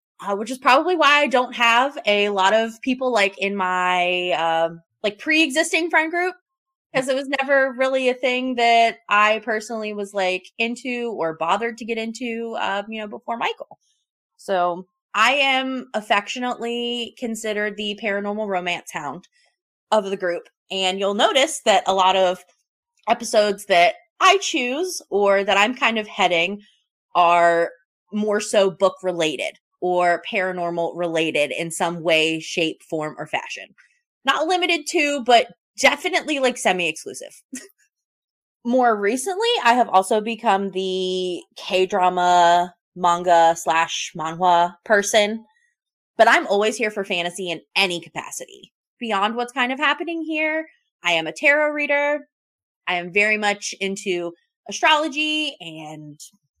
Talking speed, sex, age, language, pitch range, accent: 140 wpm, female, 20-39, English, 180-270 Hz, American